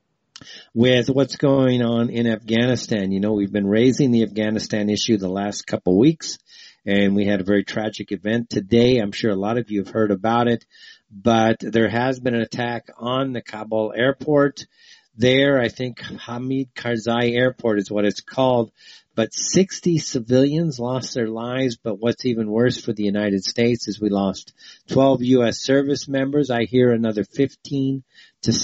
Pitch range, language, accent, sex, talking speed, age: 110-135 Hz, English, American, male, 170 wpm, 50-69